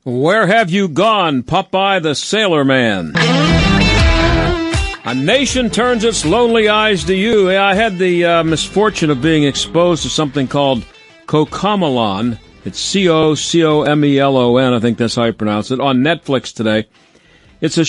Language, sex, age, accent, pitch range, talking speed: English, male, 50-69, American, 130-175 Hz, 140 wpm